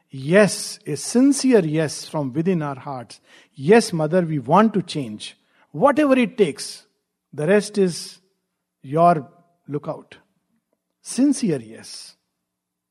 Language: English